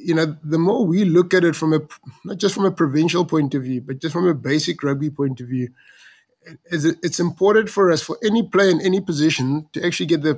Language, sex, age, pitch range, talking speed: English, male, 20-39, 140-160 Hz, 235 wpm